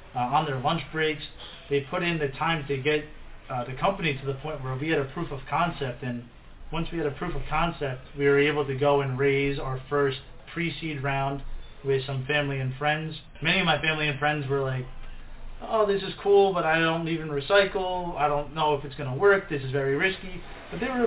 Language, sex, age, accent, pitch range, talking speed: English, male, 30-49, American, 135-155 Hz, 230 wpm